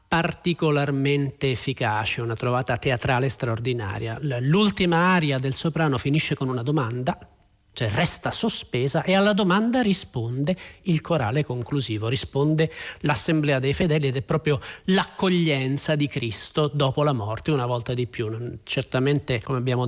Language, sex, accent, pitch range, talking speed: Italian, male, native, 125-165 Hz, 135 wpm